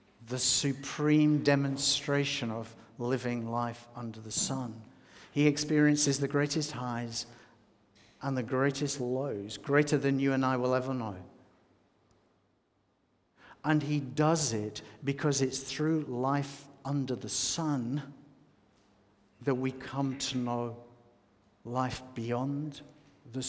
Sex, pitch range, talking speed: male, 115-145 Hz, 115 wpm